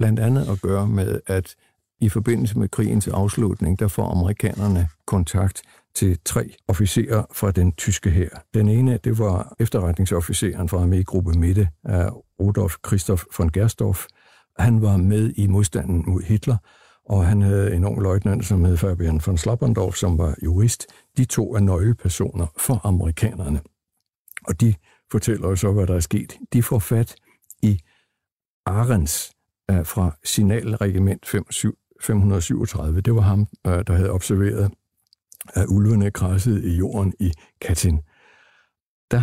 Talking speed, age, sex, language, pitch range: 145 wpm, 60-79, male, Danish, 95-110 Hz